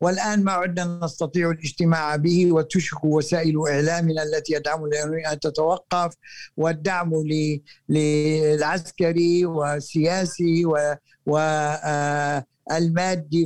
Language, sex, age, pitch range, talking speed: Arabic, male, 60-79, 150-175 Hz, 75 wpm